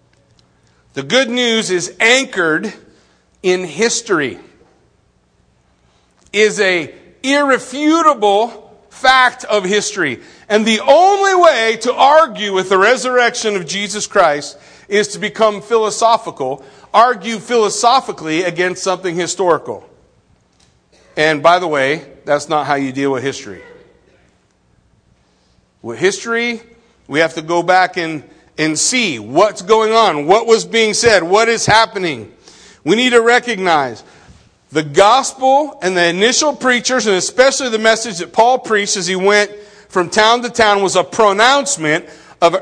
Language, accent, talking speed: English, American, 130 wpm